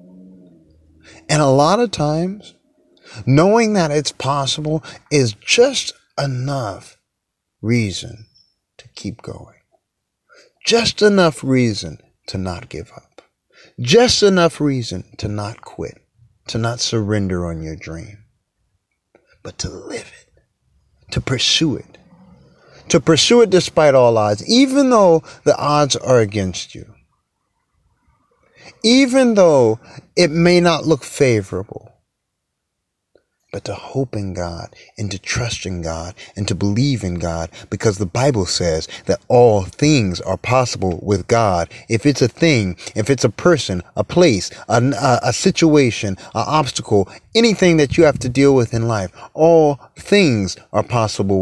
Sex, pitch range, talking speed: male, 100-150 Hz, 135 wpm